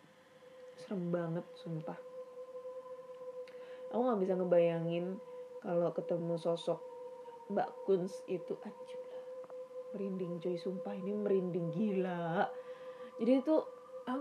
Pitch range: 190-290 Hz